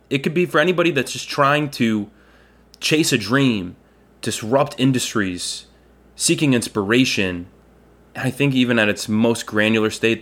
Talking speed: 145 wpm